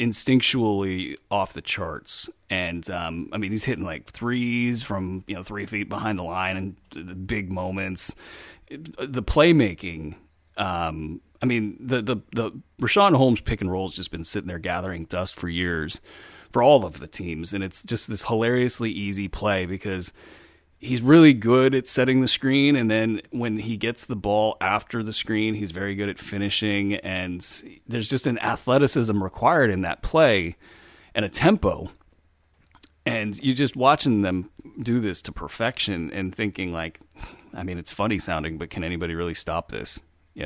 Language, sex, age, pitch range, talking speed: English, male, 30-49, 90-115 Hz, 170 wpm